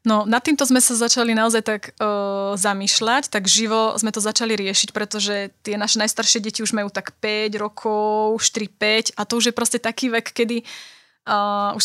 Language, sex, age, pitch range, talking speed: Slovak, female, 20-39, 205-230 Hz, 175 wpm